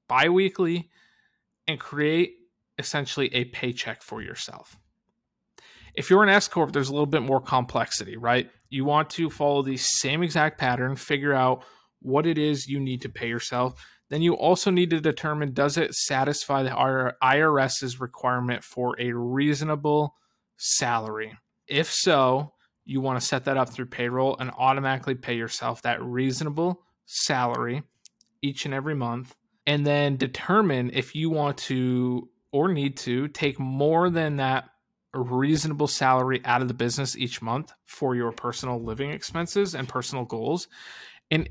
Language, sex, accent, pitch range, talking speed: English, male, American, 125-155 Hz, 150 wpm